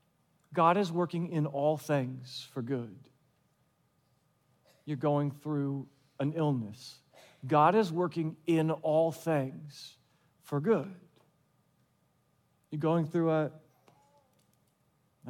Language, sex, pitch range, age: English, male, 135-180 Hz, 40-59